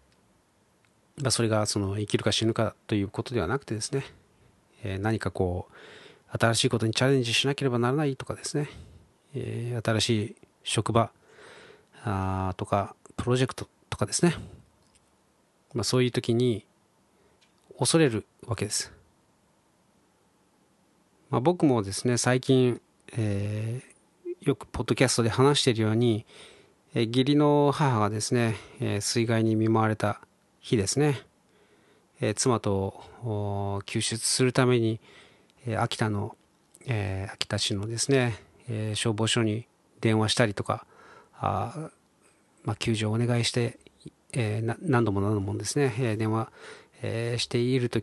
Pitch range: 105-130 Hz